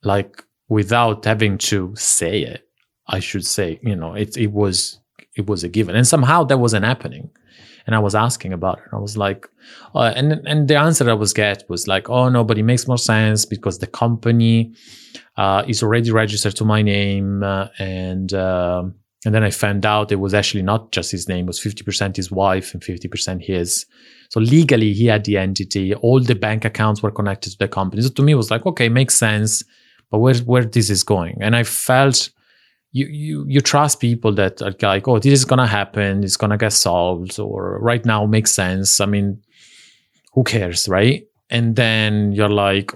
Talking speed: 205 wpm